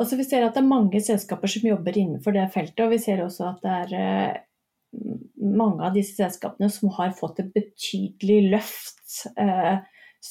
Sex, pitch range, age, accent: female, 190-220 Hz, 30-49, Swedish